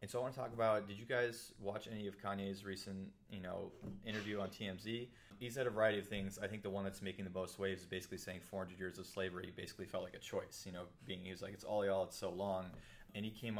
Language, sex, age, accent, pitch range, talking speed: English, male, 30-49, American, 95-105 Hz, 275 wpm